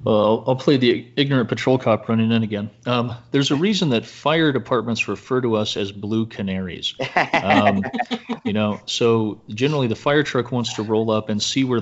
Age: 40-59